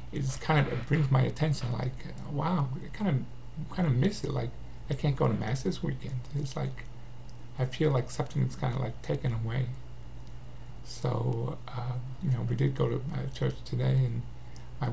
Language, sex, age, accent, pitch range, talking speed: English, male, 50-69, American, 120-135 Hz, 185 wpm